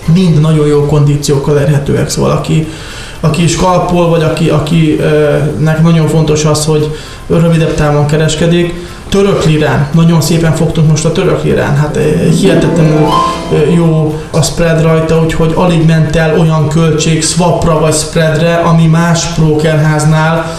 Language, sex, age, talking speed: Hungarian, male, 20-39, 135 wpm